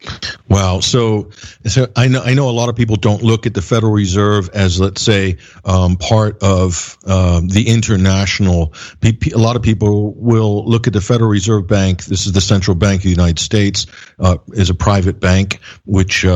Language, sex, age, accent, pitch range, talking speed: English, male, 50-69, American, 95-115 Hz, 190 wpm